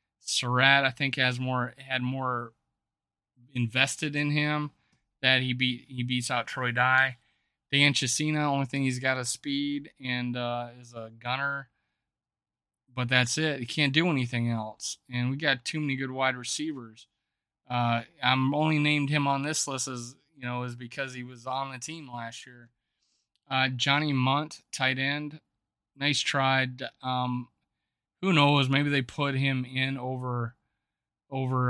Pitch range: 120-140 Hz